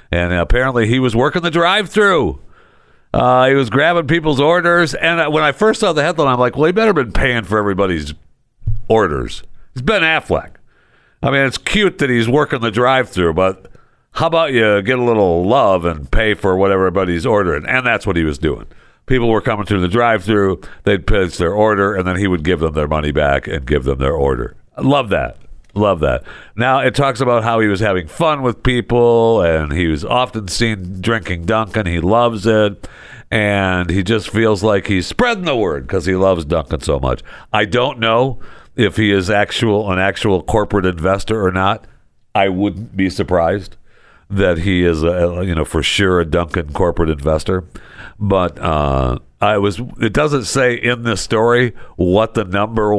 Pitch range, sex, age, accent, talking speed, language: 90-120 Hz, male, 60-79, American, 190 wpm, English